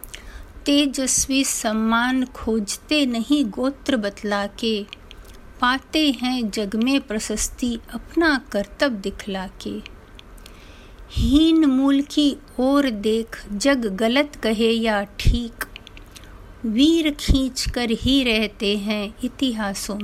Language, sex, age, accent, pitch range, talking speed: Hindi, female, 50-69, native, 210-265 Hz, 95 wpm